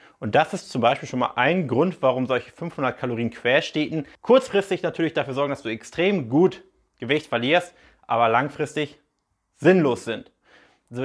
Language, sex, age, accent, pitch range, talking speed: German, male, 30-49, German, 130-170 Hz, 155 wpm